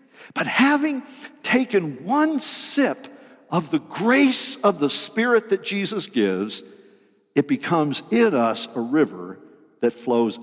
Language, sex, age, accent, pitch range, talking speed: English, male, 50-69, American, 150-245 Hz, 125 wpm